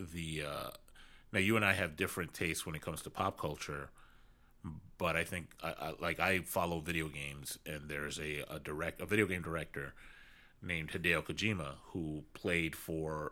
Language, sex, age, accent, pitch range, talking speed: English, male, 30-49, American, 80-95 Hz, 180 wpm